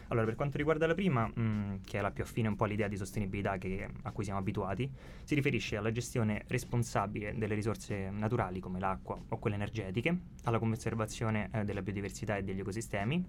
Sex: male